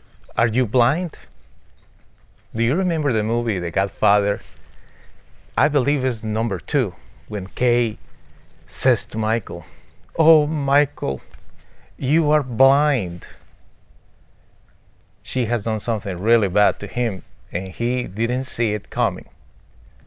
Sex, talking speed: male, 115 wpm